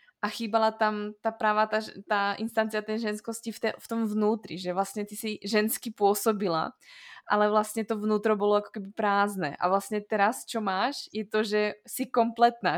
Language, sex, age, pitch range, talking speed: Slovak, female, 20-39, 200-225 Hz, 185 wpm